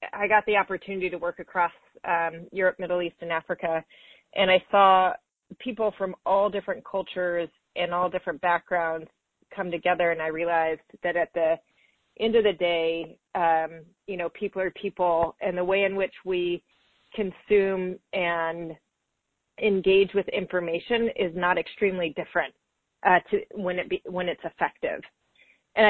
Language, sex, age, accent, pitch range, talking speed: English, female, 30-49, American, 170-195 Hz, 155 wpm